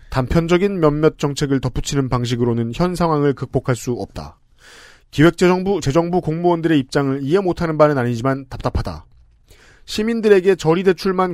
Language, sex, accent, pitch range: Korean, male, native, 130-175 Hz